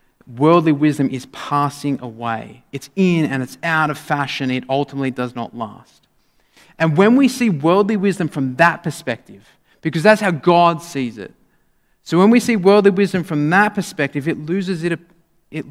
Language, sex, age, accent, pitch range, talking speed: English, male, 30-49, Australian, 130-170 Hz, 170 wpm